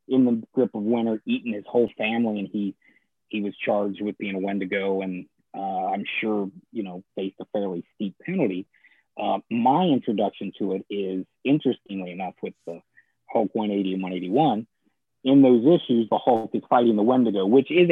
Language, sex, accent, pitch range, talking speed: English, male, American, 100-130 Hz, 180 wpm